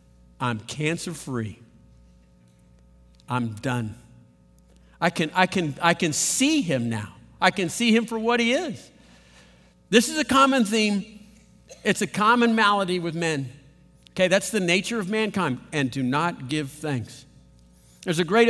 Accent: American